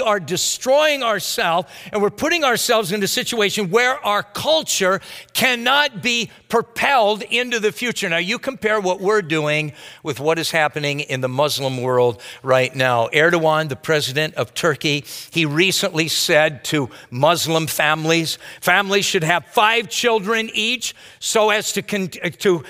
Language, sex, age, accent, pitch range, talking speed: English, male, 50-69, American, 145-215 Hz, 150 wpm